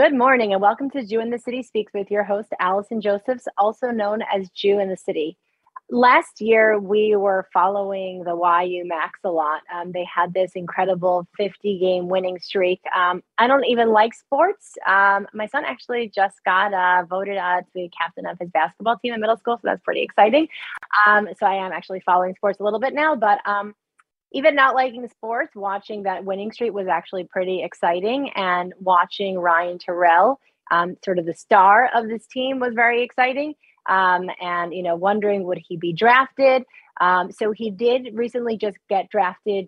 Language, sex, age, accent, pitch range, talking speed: English, female, 20-39, American, 180-235 Hz, 195 wpm